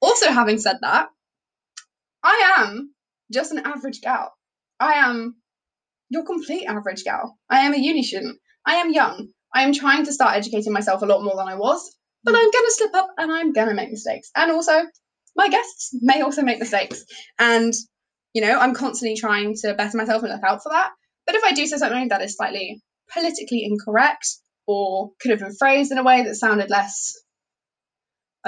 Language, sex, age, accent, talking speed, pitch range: English, female, 10-29, British, 200 wpm, 210-305 Hz